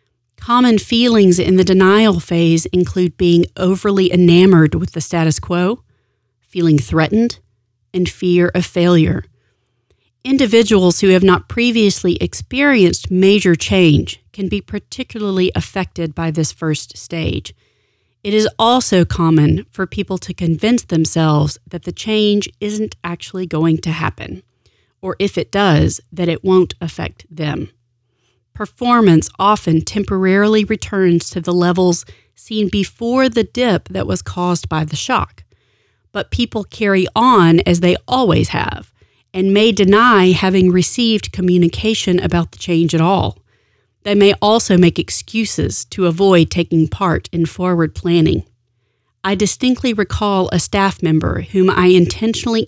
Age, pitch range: 30-49, 155-200 Hz